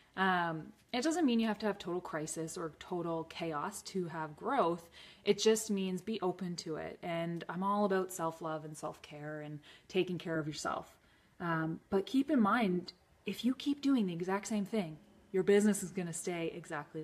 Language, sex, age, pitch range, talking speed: English, female, 20-39, 170-220 Hz, 195 wpm